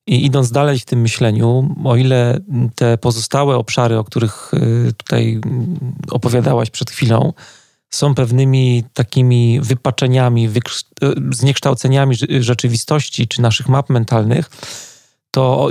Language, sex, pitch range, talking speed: Polish, male, 120-135 Hz, 115 wpm